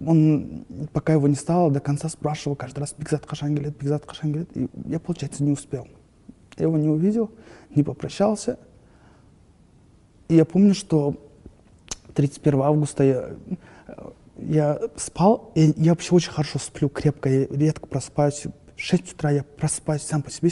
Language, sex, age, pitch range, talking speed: Russian, male, 20-39, 140-155 Hz, 145 wpm